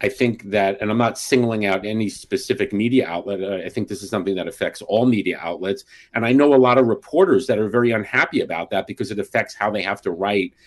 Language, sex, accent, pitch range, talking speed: English, male, American, 100-125 Hz, 240 wpm